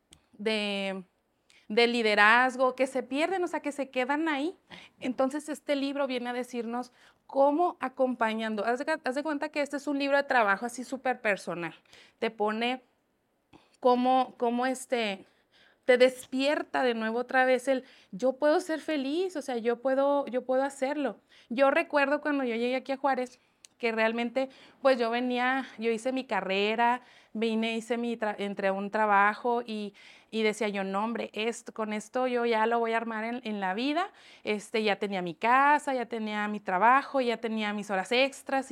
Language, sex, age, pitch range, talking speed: Spanish, female, 30-49, 225-275 Hz, 170 wpm